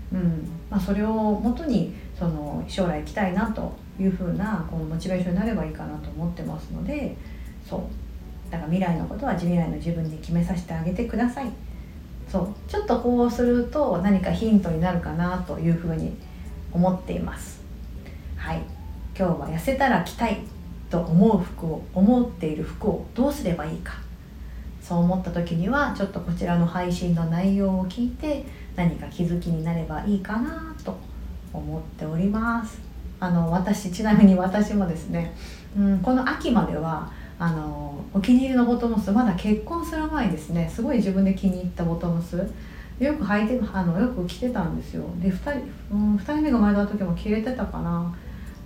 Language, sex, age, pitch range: Japanese, female, 40-59, 160-215 Hz